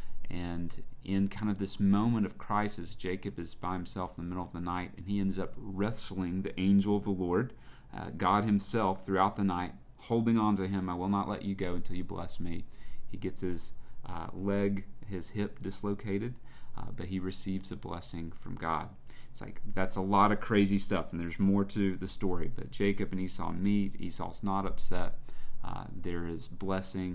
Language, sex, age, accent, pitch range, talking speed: English, male, 30-49, American, 90-105 Hz, 200 wpm